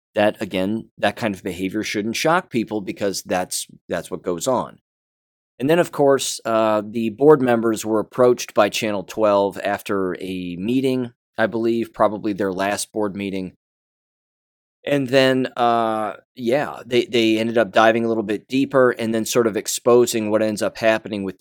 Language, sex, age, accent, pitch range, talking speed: English, male, 20-39, American, 100-120 Hz, 170 wpm